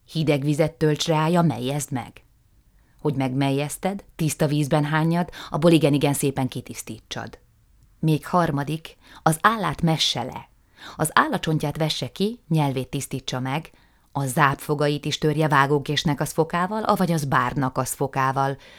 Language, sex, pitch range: Hungarian, female, 130-165 Hz